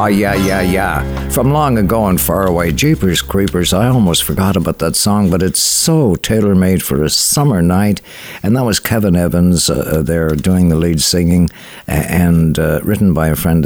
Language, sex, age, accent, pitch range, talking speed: English, male, 60-79, American, 85-110 Hz, 190 wpm